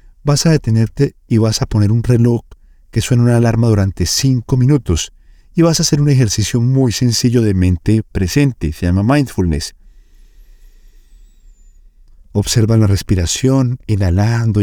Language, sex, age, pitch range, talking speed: Spanish, male, 50-69, 95-125 Hz, 140 wpm